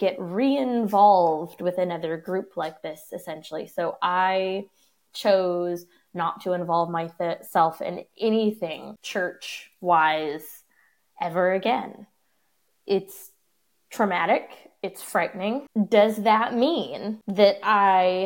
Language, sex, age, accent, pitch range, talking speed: English, female, 20-39, American, 175-210 Hz, 95 wpm